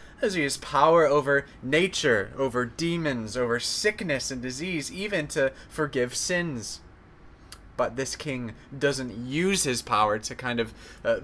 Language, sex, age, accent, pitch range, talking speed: English, male, 20-39, American, 120-155 Hz, 145 wpm